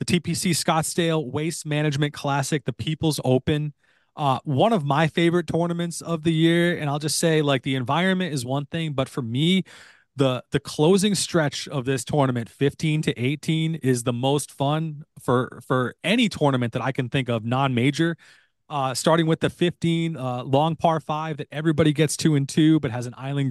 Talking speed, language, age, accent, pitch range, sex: 190 wpm, English, 30-49, American, 130-160 Hz, male